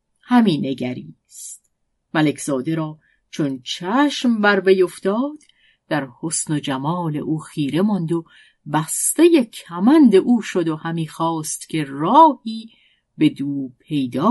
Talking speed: 115 wpm